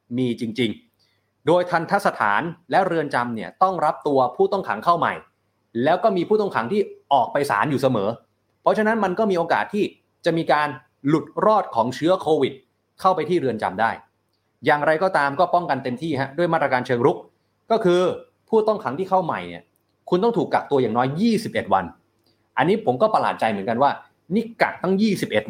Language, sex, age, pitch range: Thai, male, 20-39, 115-180 Hz